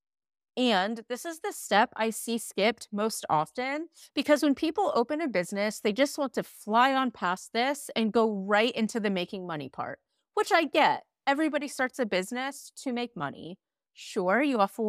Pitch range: 195-250 Hz